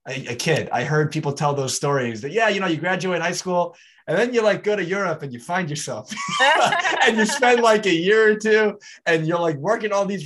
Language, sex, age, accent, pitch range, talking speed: English, male, 20-39, American, 130-170 Hz, 240 wpm